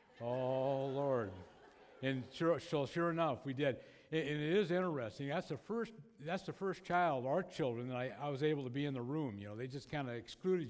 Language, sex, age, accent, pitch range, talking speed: English, male, 60-79, American, 115-150 Hz, 225 wpm